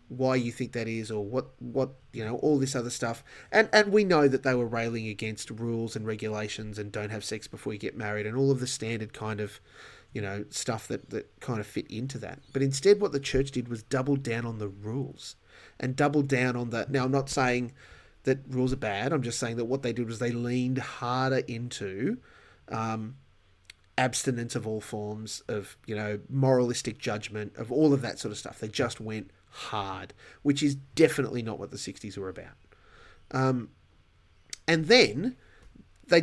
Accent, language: Australian, English